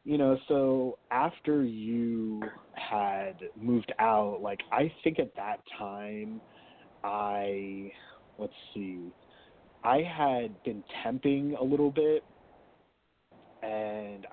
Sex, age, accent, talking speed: male, 30-49, American, 105 wpm